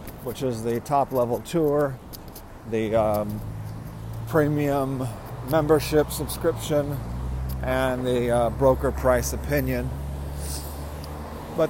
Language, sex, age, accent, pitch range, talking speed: English, male, 40-59, American, 105-140 Hz, 85 wpm